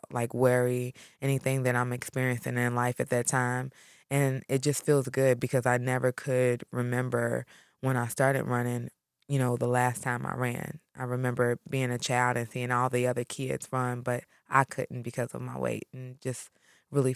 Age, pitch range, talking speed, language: 20-39, 120-135 Hz, 190 wpm, English